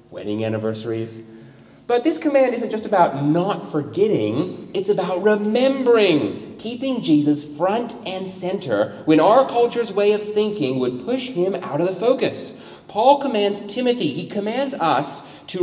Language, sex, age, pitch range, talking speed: English, male, 30-49, 135-225 Hz, 145 wpm